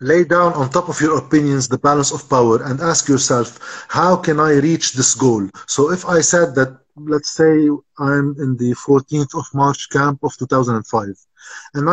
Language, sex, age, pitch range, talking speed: Arabic, male, 50-69, 130-165 Hz, 185 wpm